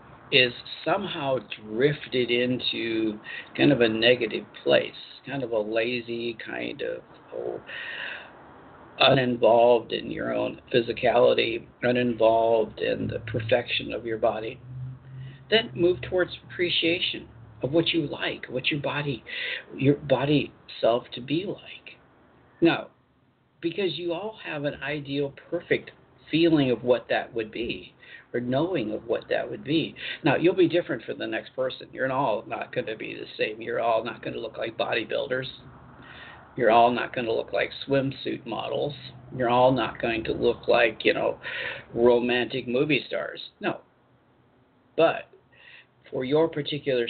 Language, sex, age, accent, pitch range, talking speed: English, male, 50-69, American, 120-165 Hz, 150 wpm